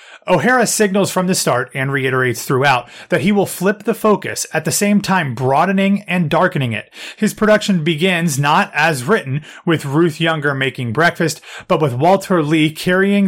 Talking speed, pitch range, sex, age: 170 wpm, 135-180 Hz, male, 30-49